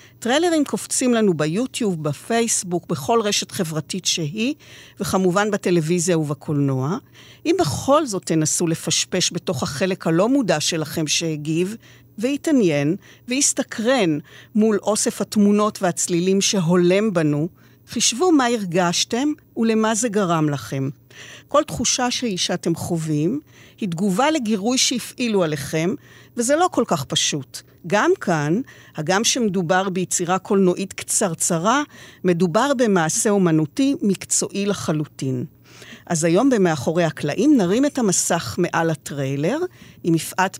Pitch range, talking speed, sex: 160-220 Hz, 110 wpm, female